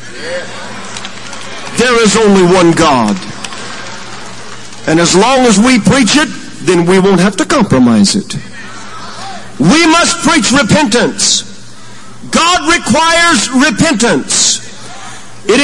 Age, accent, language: 50-69, American, English